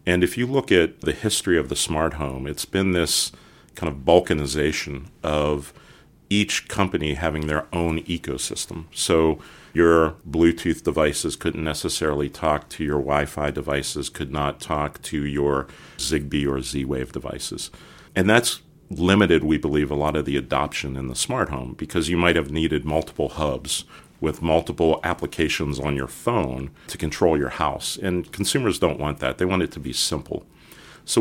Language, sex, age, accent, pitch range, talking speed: English, male, 40-59, American, 70-85 Hz, 165 wpm